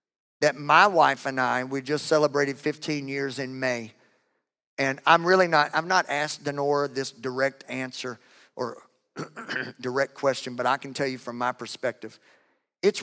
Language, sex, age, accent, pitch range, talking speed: English, male, 50-69, American, 125-145 Hz, 165 wpm